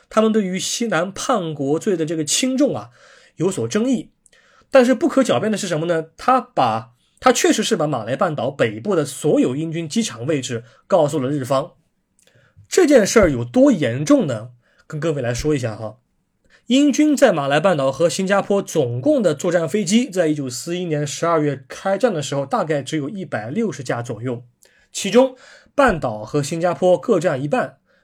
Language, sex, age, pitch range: Chinese, male, 20-39, 145-230 Hz